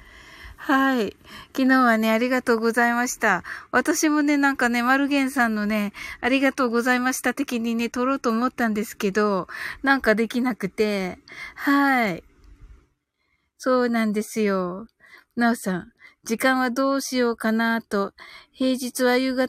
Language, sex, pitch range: Japanese, female, 200-255 Hz